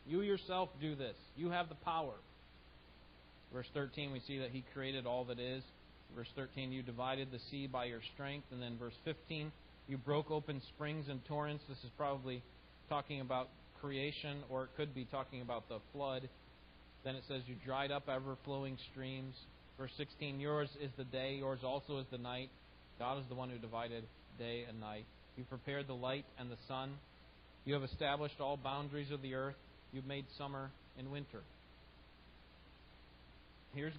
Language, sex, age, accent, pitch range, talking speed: English, male, 30-49, American, 115-145 Hz, 175 wpm